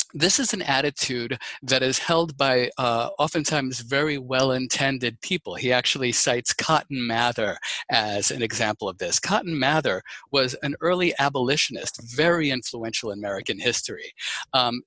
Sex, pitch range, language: male, 120-155 Hz, English